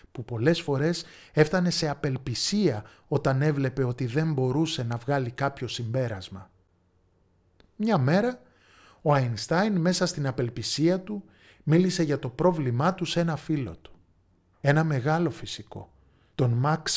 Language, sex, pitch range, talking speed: Greek, male, 95-155 Hz, 130 wpm